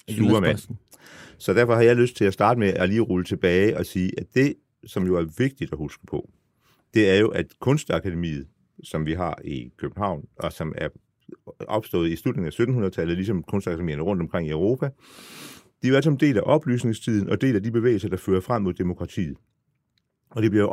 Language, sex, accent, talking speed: Danish, male, native, 195 wpm